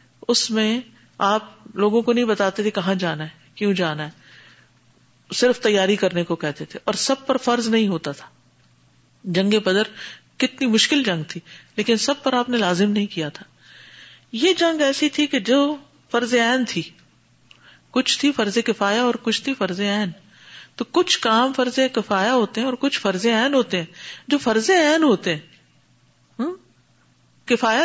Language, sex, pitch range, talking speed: Urdu, female, 190-260 Hz, 170 wpm